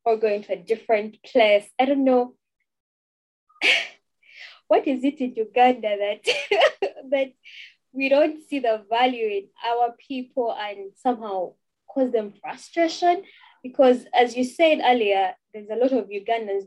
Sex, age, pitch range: female, 10-29, 215-290 Hz